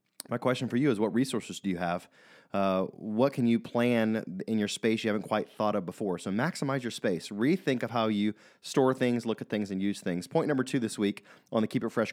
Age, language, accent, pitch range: 30-49, English, American, 100-120 Hz